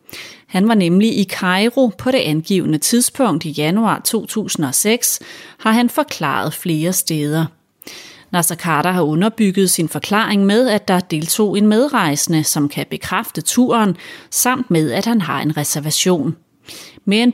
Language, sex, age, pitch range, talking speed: Danish, female, 30-49, 160-220 Hz, 140 wpm